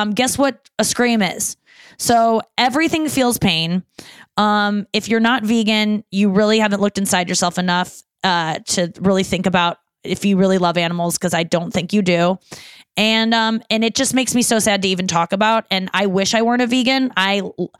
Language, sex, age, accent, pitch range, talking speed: English, female, 20-39, American, 185-220 Hz, 200 wpm